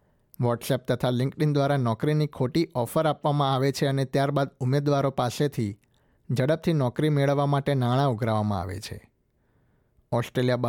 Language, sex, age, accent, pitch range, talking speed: Gujarati, male, 50-69, native, 120-145 Hz, 130 wpm